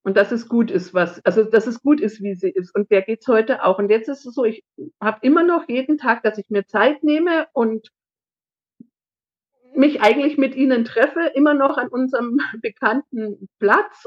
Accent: German